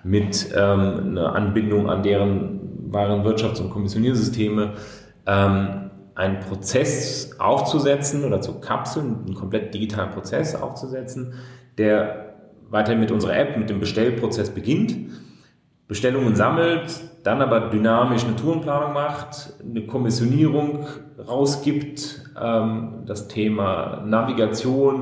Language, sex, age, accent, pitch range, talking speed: German, male, 30-49, German, 105-130 Hz, 110 wpm